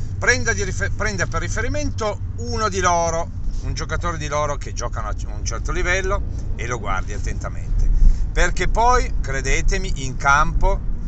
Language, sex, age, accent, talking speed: Italian, male, 50-69, native, 135 wpm